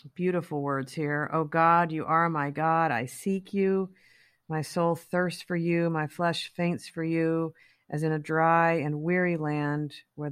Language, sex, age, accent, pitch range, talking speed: English, female, 40-59, American, 145-170 Hz, 175 wpm